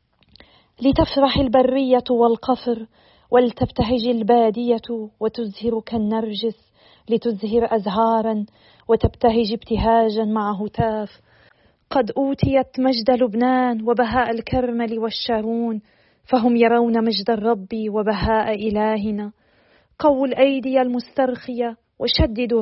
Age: 40-59